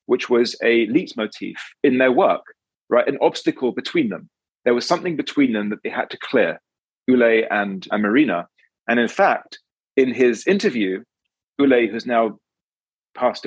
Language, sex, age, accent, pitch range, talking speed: English, male, 30-49, British, 110-165 Hz, 160 wpm